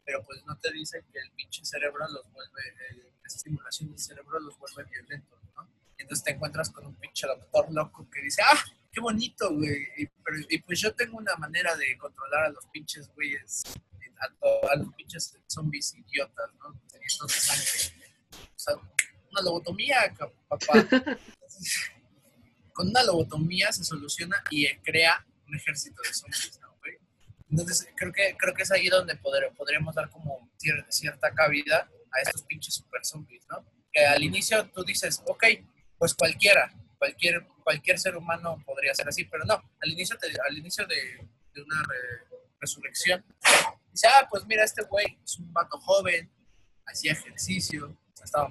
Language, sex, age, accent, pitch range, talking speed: Spanish, male, 20-39, Mexican, 150-200 Hz, 165 wpm